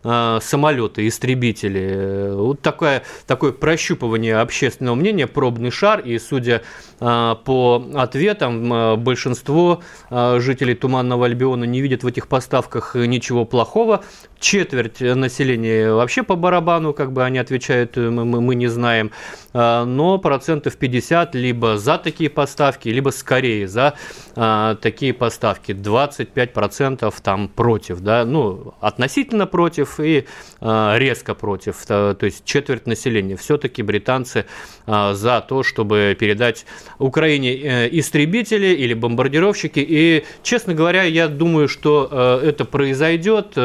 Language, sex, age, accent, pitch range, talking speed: Russian, male, 30-49, native, 115-145 Hz, 115 wpm